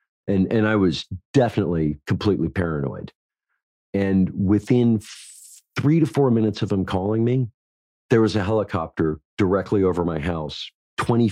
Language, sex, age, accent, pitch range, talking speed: English, male, 40-59, American, 80-105 Hz, 140 wpm